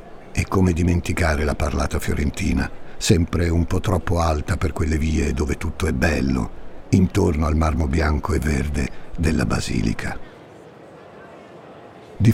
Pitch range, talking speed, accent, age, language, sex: 85-110 Hz, 130 wpm, native, 60-79, Italian, male